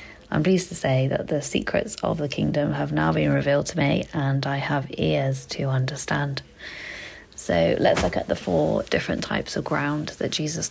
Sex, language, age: female, English, 30-49